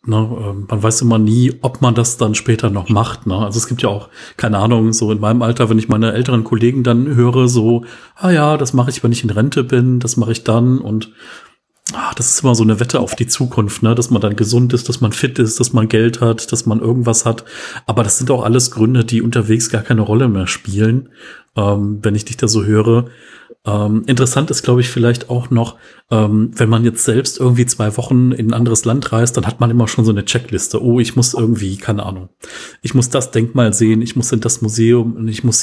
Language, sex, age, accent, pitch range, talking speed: German, male, 40-59, German, 110-125 Hz, 235 wpm